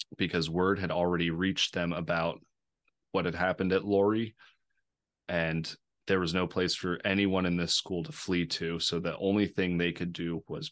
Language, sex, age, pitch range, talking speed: English, male, 30-49, 85-100 Hz, 185 wpm